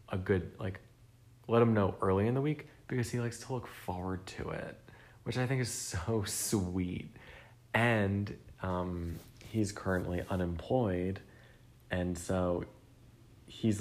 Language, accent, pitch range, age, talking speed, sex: English, American, 90-125 Hz, 30-49, 140 wpm, male